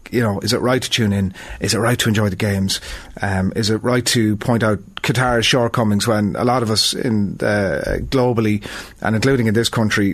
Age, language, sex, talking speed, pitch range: 30-49, English, male, 215 wpm, 105-120 Hz